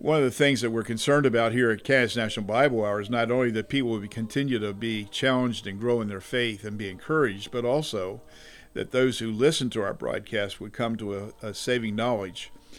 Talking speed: 225 wpm